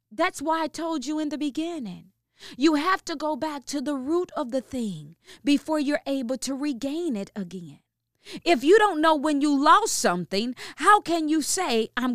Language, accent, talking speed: English, American, 195 wpm